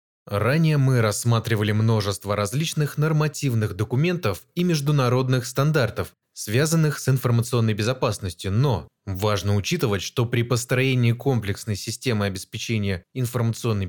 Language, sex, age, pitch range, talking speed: Russian, male, 20-39, 105-140 Hz, 105 wpm